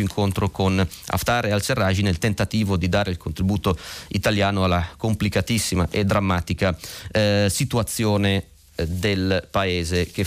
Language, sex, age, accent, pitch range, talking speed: Italian, male, 30-49, native, 95-115 Hz, 130 wpm